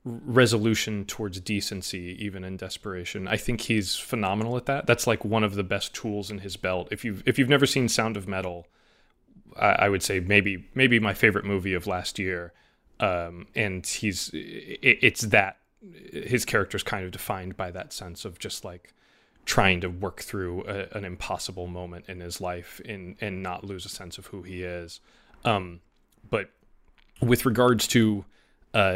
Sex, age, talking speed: male, 20-39, 180 wpm